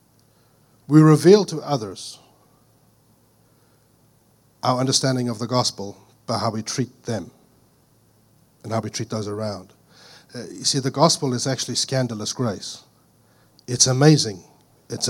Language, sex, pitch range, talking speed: English, male, 115-140 Hz, 125 wpm